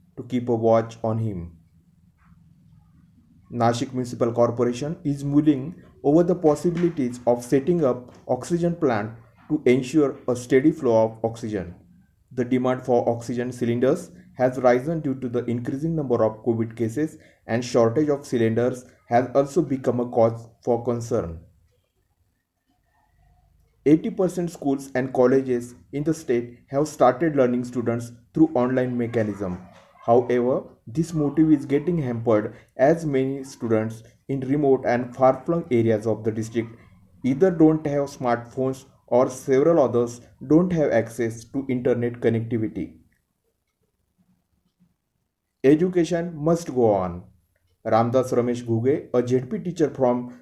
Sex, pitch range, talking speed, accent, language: male, 115-140 Hz, 125 wpm, native, Marathi